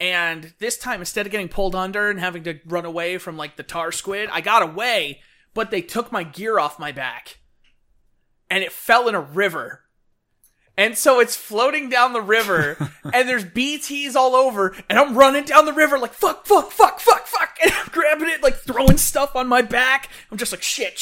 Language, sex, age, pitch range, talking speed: English, male, 20-39, 175-265 Hz, 210 wpm